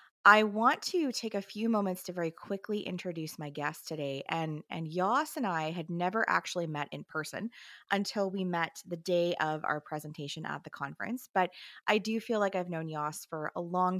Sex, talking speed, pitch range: female, 200 wpm, 160-205 Hz